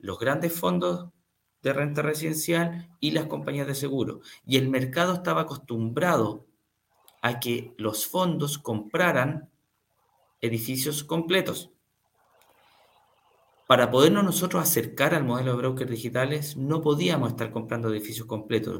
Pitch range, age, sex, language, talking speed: 110-145 Hz, 50-69, male, Spanish, 120 wpm